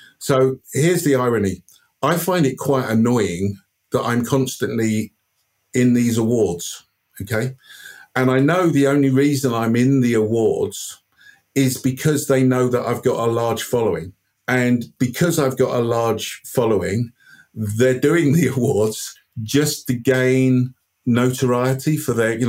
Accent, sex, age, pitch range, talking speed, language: British, male, 50-69, 110-130 Hz, 145 wpm, English